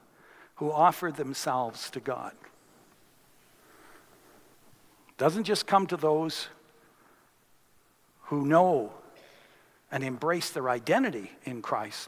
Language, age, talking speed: English, 60-79, 90 wpm